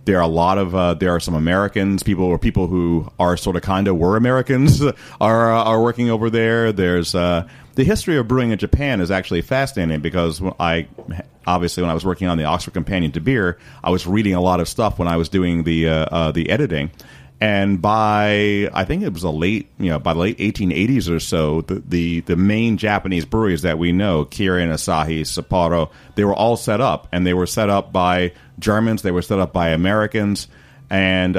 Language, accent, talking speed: English, American, 220 wpm